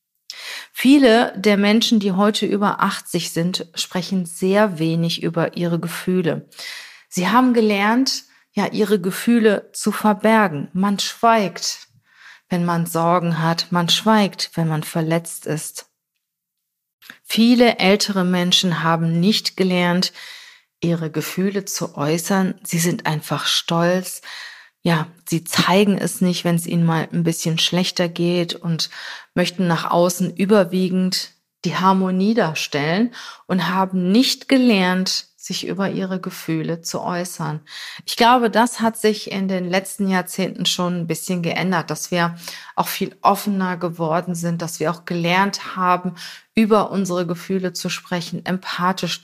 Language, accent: German, German